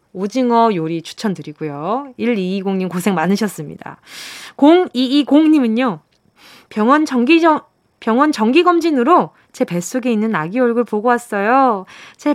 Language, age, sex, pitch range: Korean, 20-39, female, 190-270 Hz